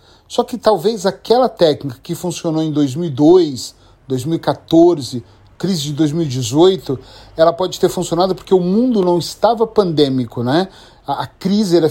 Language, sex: Portuguese, male